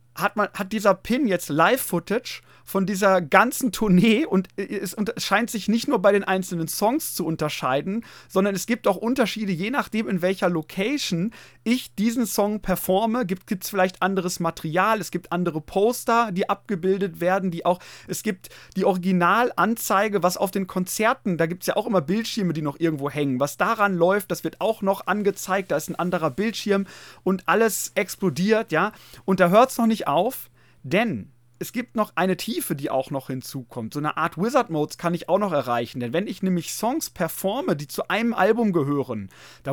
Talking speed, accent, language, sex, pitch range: 185 wpm, German, German, male, 165-215 Hz